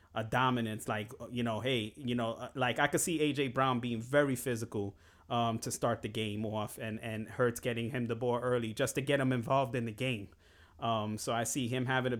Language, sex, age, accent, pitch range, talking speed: English, male, 30-49, American, 115-135 Hz, 225 wpm